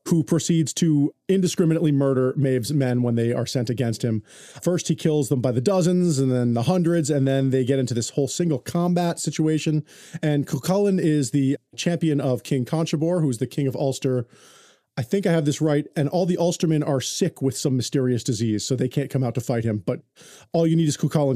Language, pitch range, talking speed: English, 130-165 Hz, 220 wpm